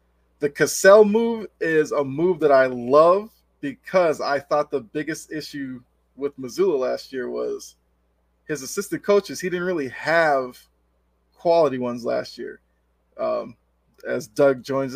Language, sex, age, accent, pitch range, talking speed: English, male, 20-39, American, 115-165 Hz, 140 wpm